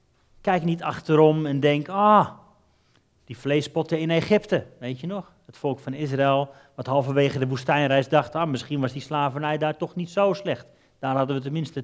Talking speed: 180 wpm